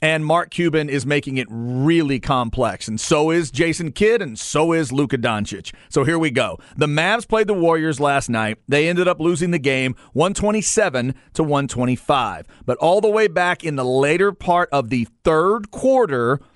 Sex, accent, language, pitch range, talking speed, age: male, American, English, 140-195 Hz, 185 wpm, 40-59